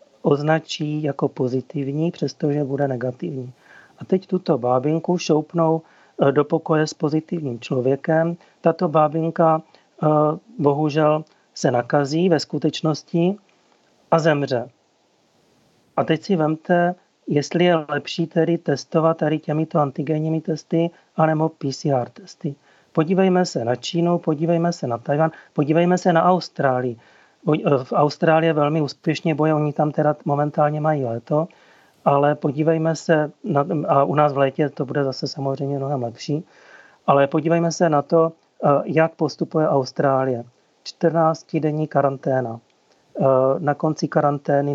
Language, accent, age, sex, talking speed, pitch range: Czech, native, 40-59, male, 120 wpm, 140-160 Hz